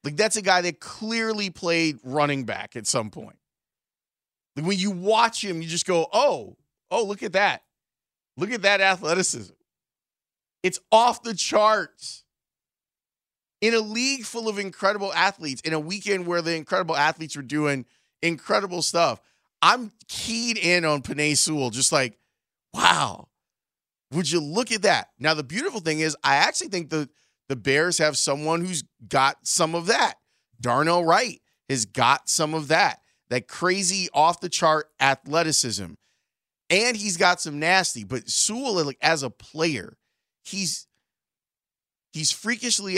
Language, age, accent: English, 30-49, American